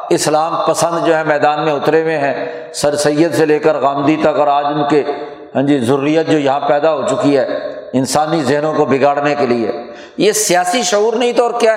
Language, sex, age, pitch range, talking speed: Urdu, male, 60-79, 155-215 Hz, 215 wpm